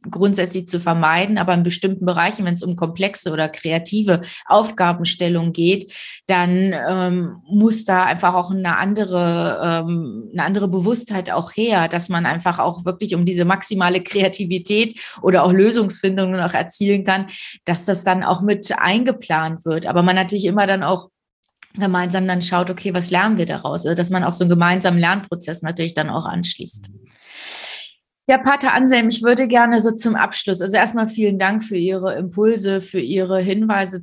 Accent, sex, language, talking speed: German, female, German, 165 wpm